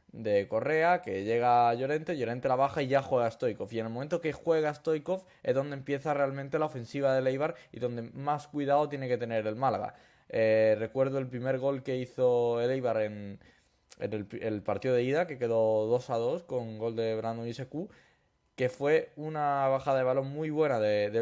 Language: Spanish